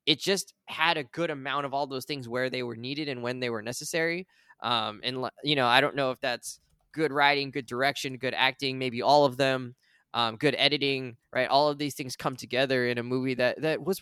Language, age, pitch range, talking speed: English, 10-29, 125-155 Hz, 230 wpm